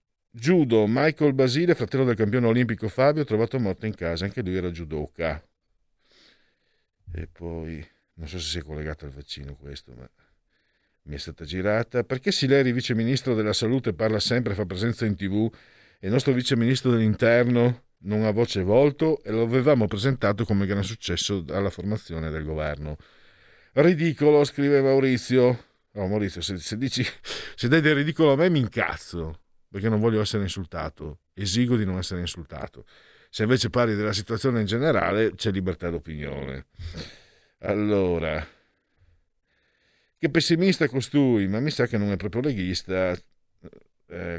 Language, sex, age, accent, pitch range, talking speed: Italian, male, 50-69, native, 85-125 Hz, 155 wpm